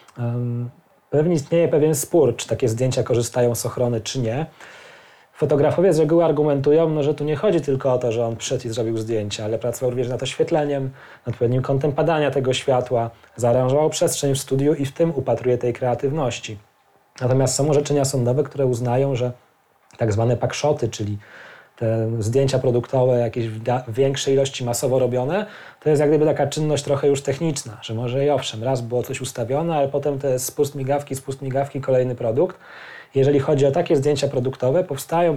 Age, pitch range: 20-39, 120-145 Hz